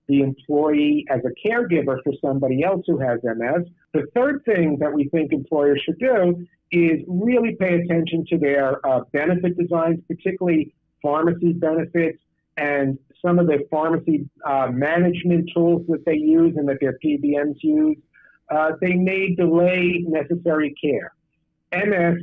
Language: English